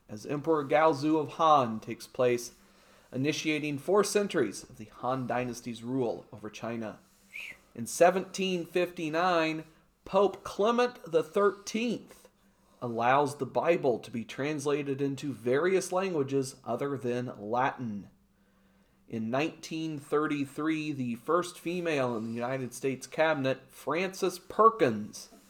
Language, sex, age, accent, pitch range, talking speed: English, male, 40-59, American, 130-165 Hz, 110 wpm